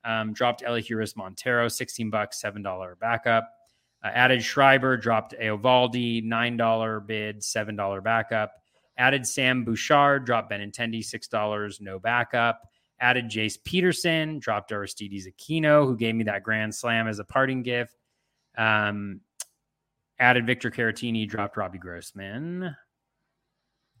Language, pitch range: English, 105-135 Hz